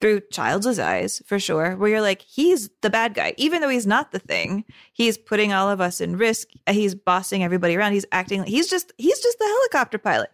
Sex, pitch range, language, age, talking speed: female, 185-245 Hz, English, 20-39, 225 wpm